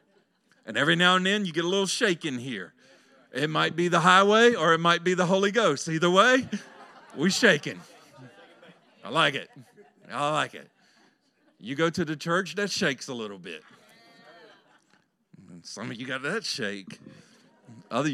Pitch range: 175-245 Hz